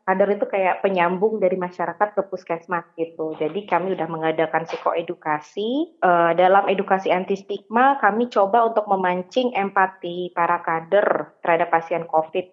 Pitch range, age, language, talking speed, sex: 185-235 Hz, 20-39, Indonesian, 140 wpm, female